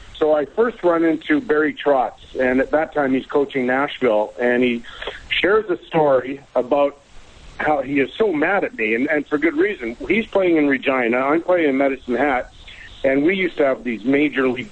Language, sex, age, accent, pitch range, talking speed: English, male, 50-69, American, 135-185 Hz, 200 wpm